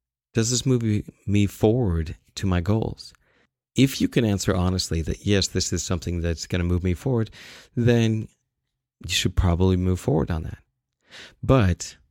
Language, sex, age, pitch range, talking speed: English, male, 30-49, 85-110 Hz, 165 wpm